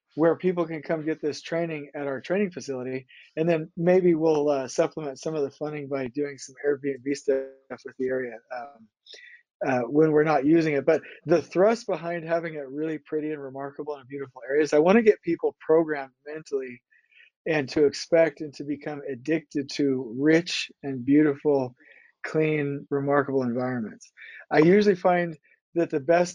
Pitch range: 140-165 Hz